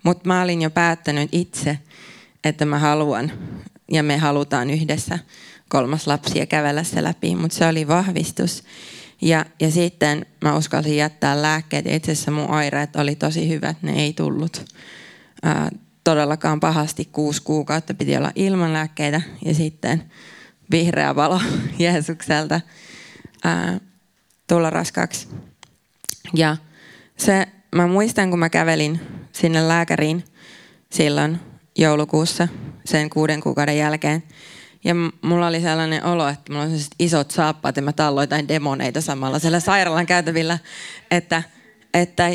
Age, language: 20-39, Finnish